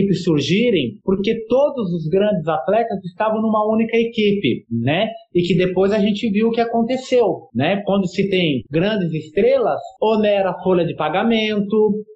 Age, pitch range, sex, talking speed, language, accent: 30-49, 175-230 Hz, male, 155 wpm, Portuguese, Brazilian